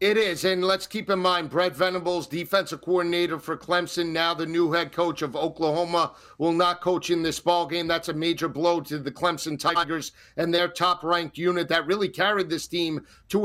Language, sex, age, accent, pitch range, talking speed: English, male, 50-69, American, 170-190 Hz, 200 wpm